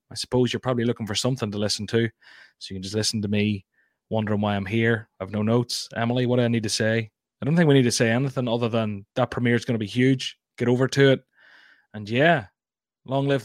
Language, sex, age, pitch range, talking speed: English, male, 20-39, 120-160 Hz, 255 wpm